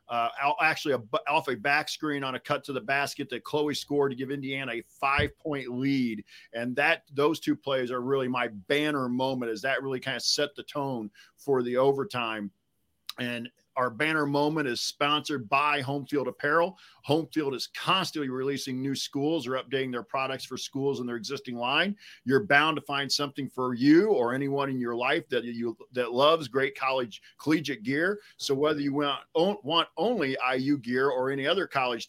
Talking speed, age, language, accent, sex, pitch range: 185 wpm, 40-59, English, American, male, 125-145 Hz